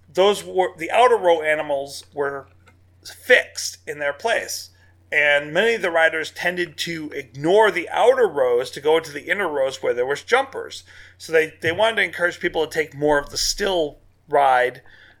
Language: English